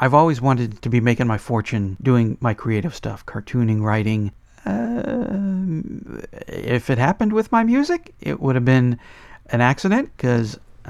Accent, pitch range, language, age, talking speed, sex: American, 110-145 Hz, English, 50-69, 155 wpm, male